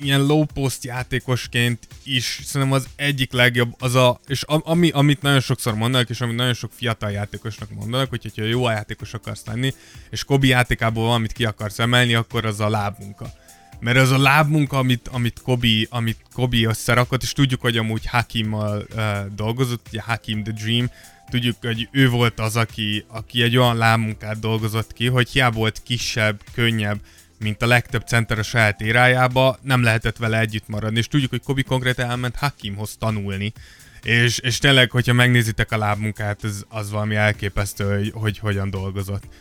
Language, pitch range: Hungarian, 110-125 Hz